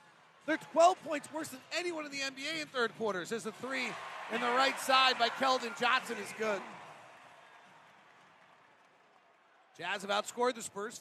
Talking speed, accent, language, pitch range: 160 wpm, American, English, 190-250 Hz